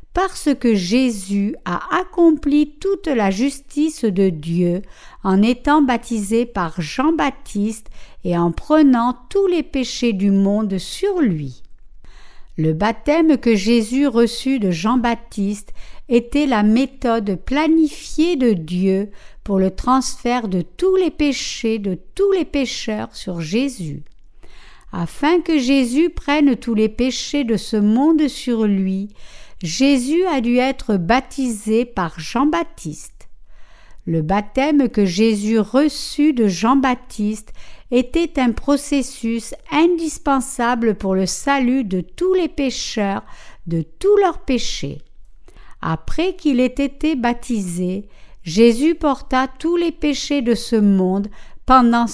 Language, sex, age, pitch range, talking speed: French, female, 60-79, 205-285 Hz, 120 wpm